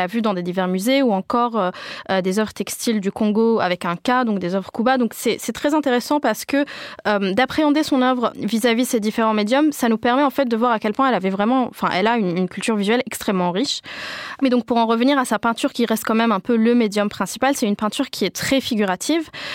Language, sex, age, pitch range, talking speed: French, female, 20-39, 210-270 Hz, 255 wpm